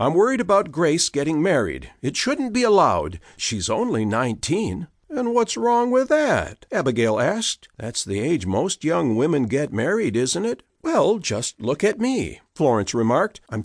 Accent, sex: American, male